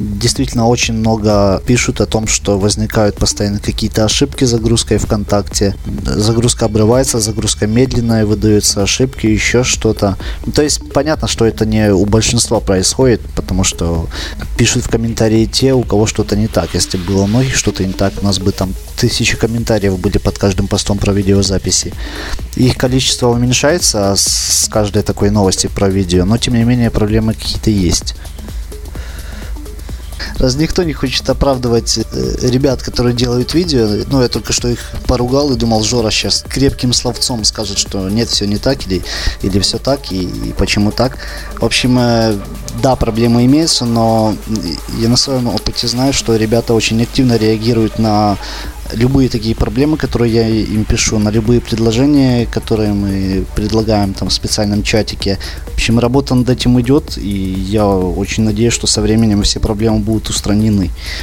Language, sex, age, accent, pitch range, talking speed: Russian, male, 20-39, native, 100-120 Hz, 160 wpm